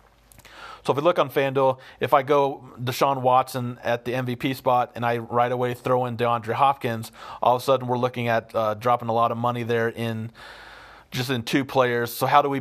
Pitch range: 115-135 Hz